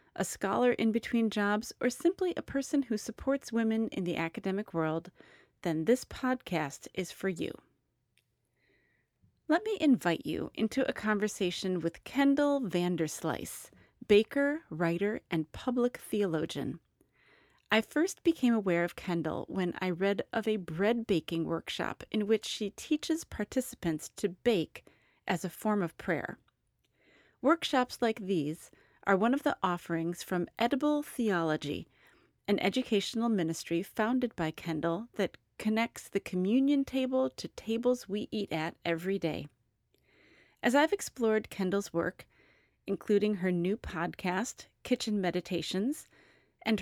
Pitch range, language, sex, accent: 175-245 Hz, English, female, American